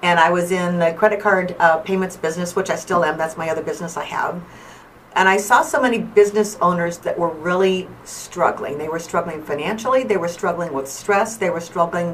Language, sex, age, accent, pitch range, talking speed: English, female, 50-69, American, 170-205 Hz, 215 wpm